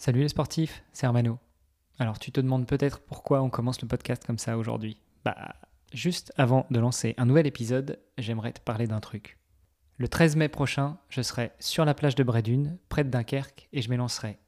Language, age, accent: French, 20-39, French